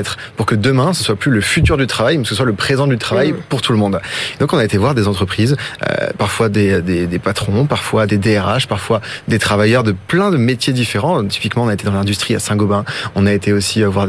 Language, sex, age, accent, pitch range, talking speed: French, male, 20-39, French, 105-135 Hz, 255 wpm